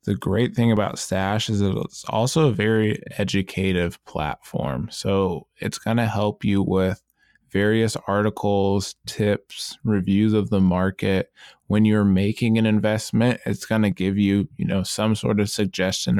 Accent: American